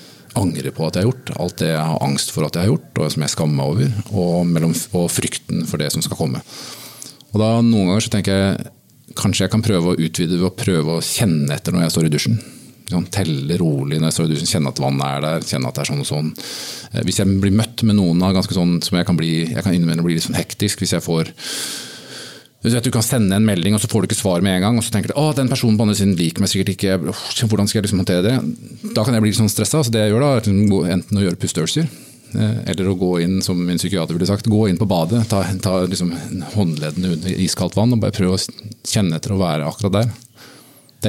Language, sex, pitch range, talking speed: English, male, 85-110 Hz, 255 wpm